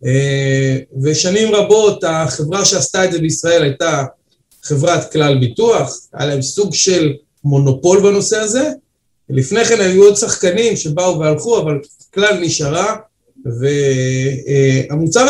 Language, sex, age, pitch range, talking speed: Hebrew, male, 30-49, 150-215 Hz, 120 wpm